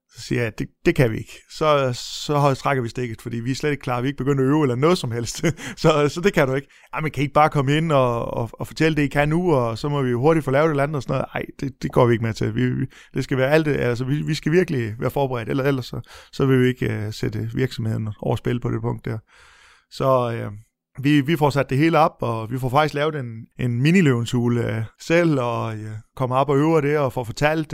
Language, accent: English, Danish